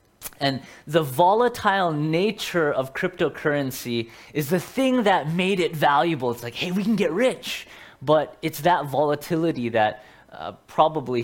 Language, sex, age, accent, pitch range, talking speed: English, male, 20-39, American, 125-175 Hz, 145 wpm